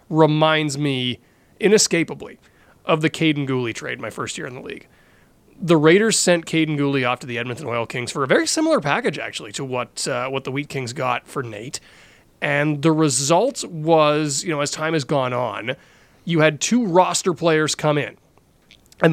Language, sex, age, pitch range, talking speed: English, male, 30-49, 130-165 Hz, 190 wpm